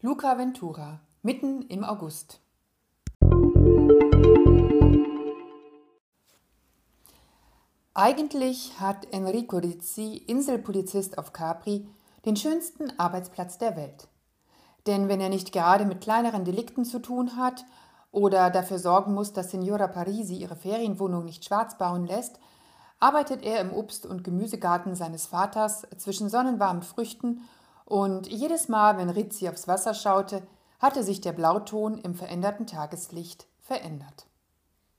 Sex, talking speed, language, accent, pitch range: female, 115 wpm, German, German, 175-225 Hz